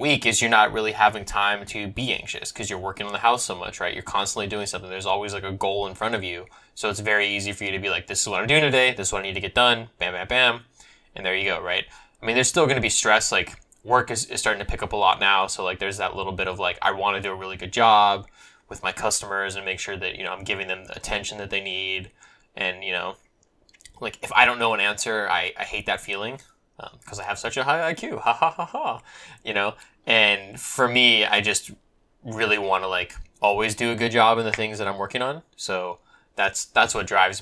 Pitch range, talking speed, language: 95-115 Hz, 275 wpm, English